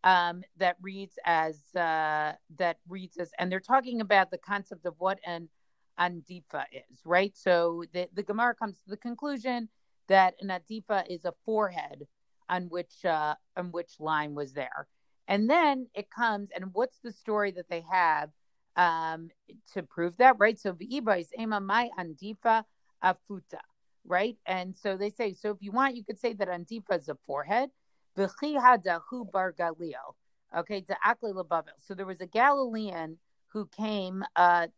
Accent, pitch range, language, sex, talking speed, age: American, 175-225 Hz, English, female, 165 wpm, 40-59